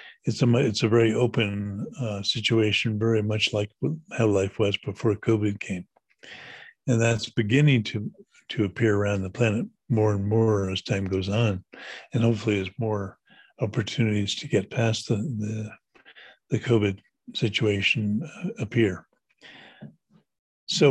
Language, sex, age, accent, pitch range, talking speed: English, male, 50-69, American, 105-125 Hz, 140 wpm